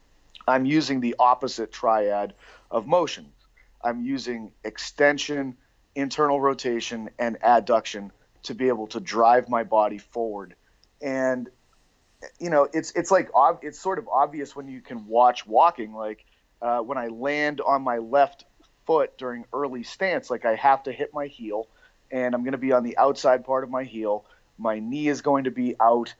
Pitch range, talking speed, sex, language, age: 115-145 Hz, 170 wpm, male, English, 30-49